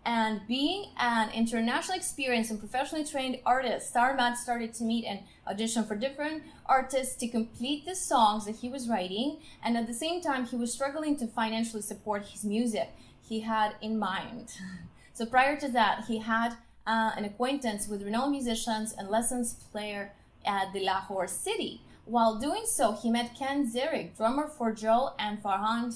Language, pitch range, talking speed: English, 215-255 Hz, 175 wpm